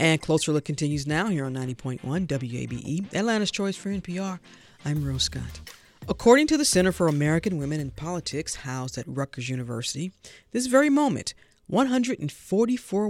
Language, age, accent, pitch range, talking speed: English, 40-59, American, 145-200 Hz, 150 wpm